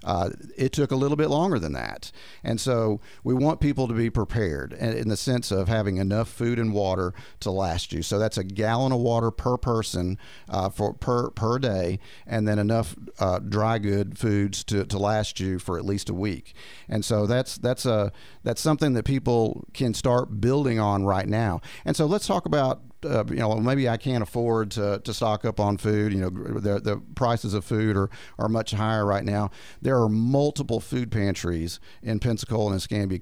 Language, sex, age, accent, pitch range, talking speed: English, male, 40-59, American, 100-120 Hz, 200 wpm